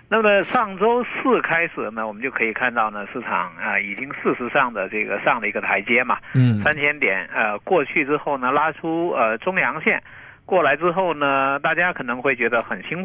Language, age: Chinese, 50-69